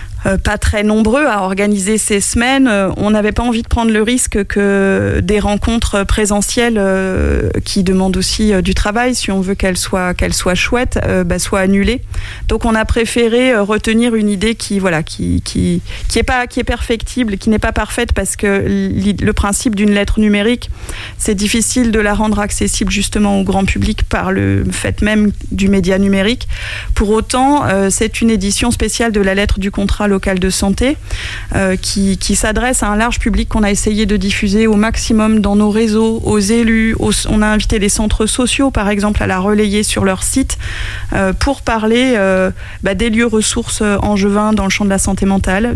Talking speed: 190 wpm